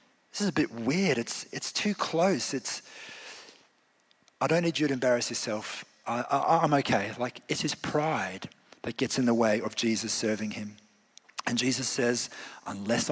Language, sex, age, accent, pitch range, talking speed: English, male, 40-59, Australian, 105-135 Hz, 175 wpm